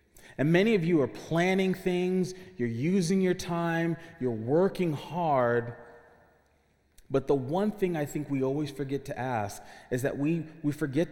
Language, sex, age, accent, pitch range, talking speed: English, male, 30-49, American, 115-160 Hz, 160 wpm